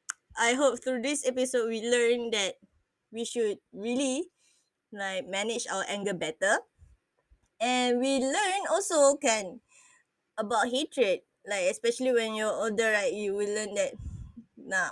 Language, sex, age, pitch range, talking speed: Malay, female, 20-39, 210-275 Hz, 135 wpm